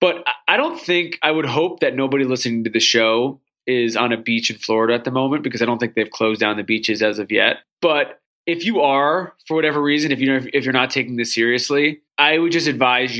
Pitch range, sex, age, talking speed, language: 115-140 Hz, male, 20-39, 240 wpm, English